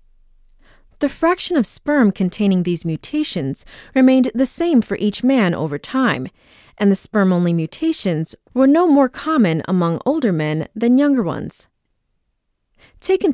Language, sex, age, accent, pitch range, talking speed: English, female, 20-39, American, 180-280 Hz, 135 wpm